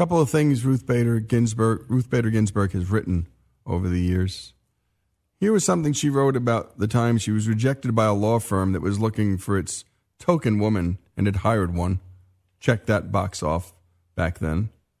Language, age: English, 40-59